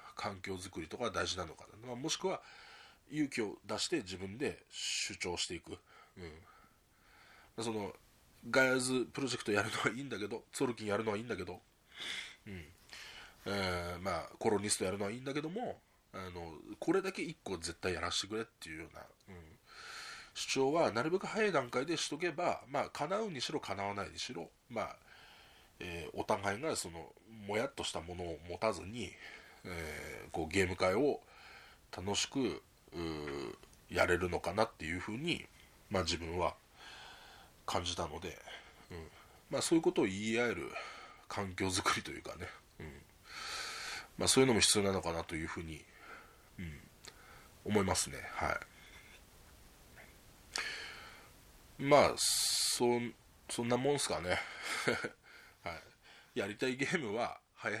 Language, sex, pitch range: Japanese, male, 90-130 Hz